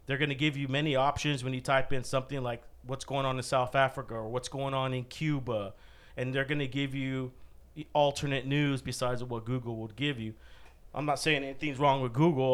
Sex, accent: male, American